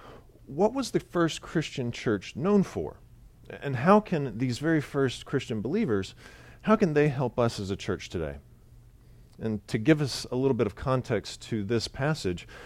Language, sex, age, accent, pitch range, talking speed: Italian, male, 40-59, American, 105-135 Hz, 175 wpm